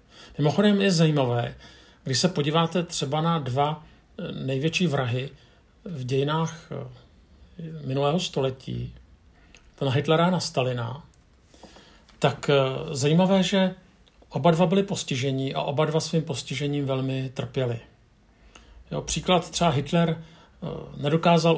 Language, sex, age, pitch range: Czech, male, 50-69, 135-160 Hz